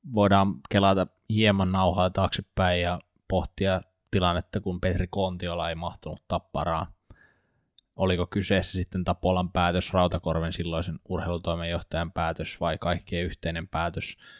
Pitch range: 90-100 Hz